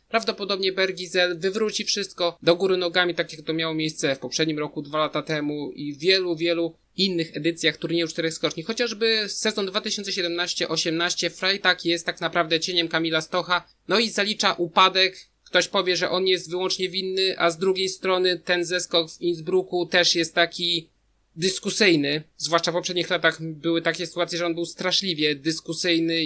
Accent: native